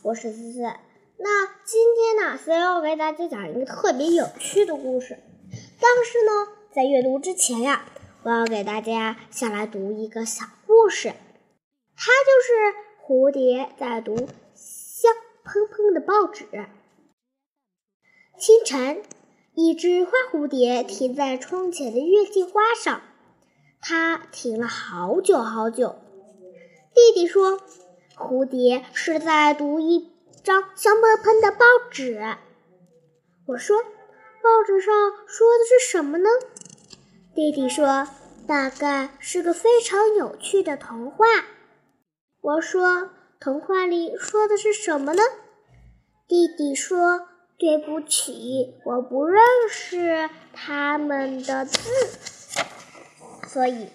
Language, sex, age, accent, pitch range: Chinese, male, 10-29, native, 255-415 Hz